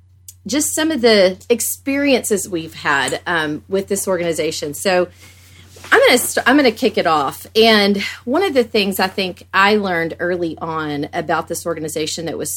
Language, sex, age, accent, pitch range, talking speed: English, female, 40-59, American, 160-230 Hz, 180 wpm